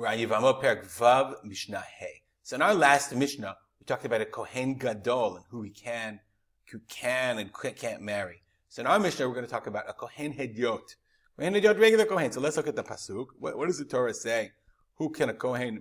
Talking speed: 195 wpm